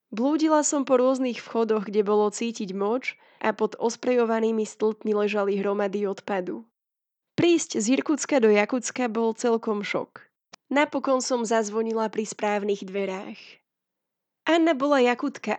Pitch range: 210-245 Hz